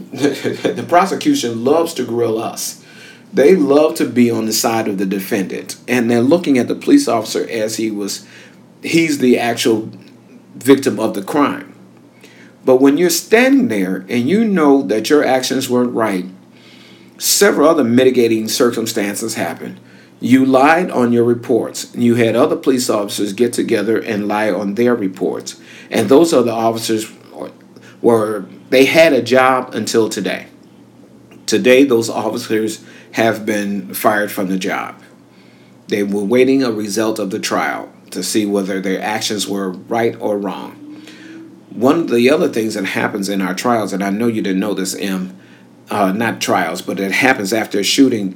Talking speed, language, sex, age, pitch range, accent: 165 wpm, English, male, 50-69, 100-125 Hz, American